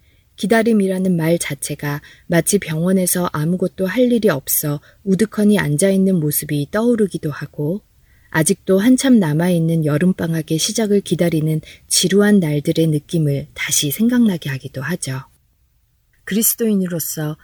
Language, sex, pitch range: Korean, female, 150-195 Hz